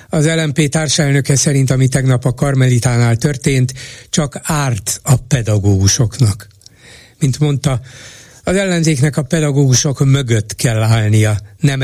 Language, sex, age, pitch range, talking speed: Hungarian, male, 60-79, 115-140 Hz, 115 wpm